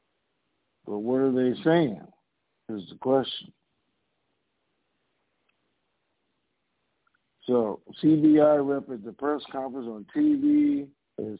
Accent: American